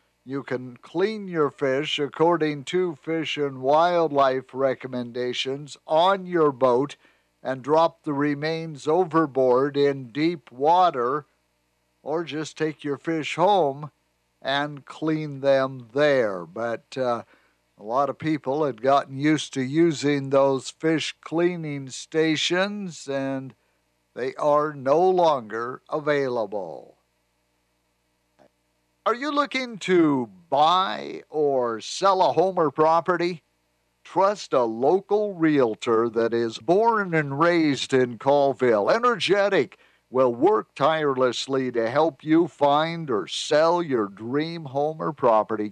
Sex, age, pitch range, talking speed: male, 60-79, 125-160 Hz, 120 wpm